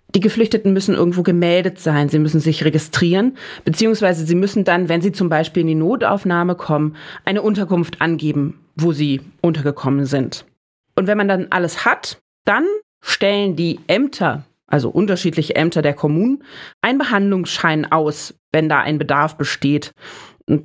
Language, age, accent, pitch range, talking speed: German, 30-49, German, 160-205 Hz, 155 wpm